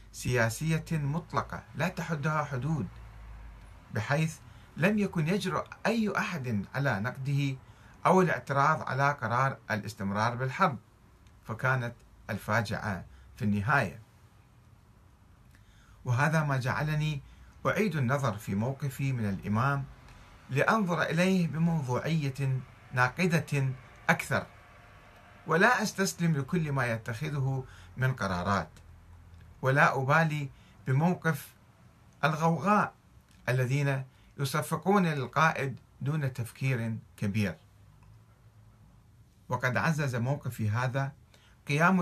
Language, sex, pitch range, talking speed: Arabic, male, 110-150 Hz, 85 wpm